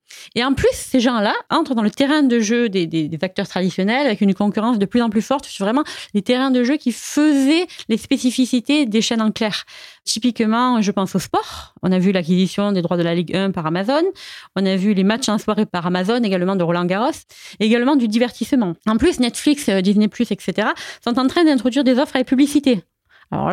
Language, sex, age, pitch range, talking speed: French, female, 30-49, 190-255 Hz, 220 wpm